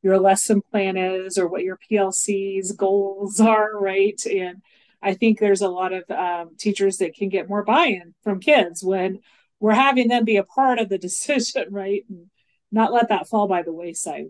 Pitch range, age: 185-220 Hz, 30-49